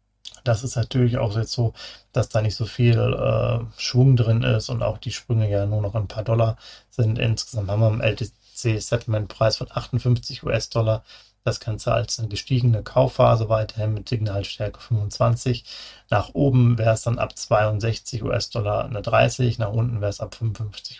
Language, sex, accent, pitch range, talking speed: German, male, German, 105-120 Hz, 170 wpm